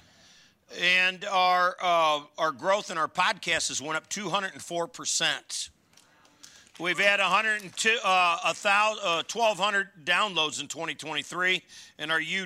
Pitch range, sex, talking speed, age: 140-175 Hz, male, 95 wpm, 50-69